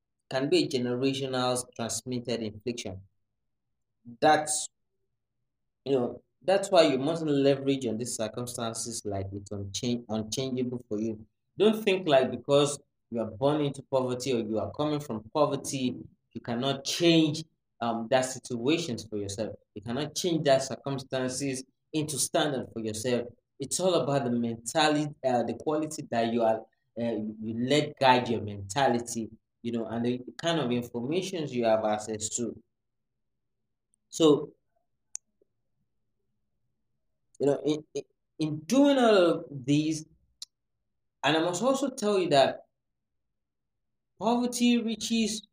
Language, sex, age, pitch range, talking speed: English, male, 20-39, 115-150 Hz, 130 wpm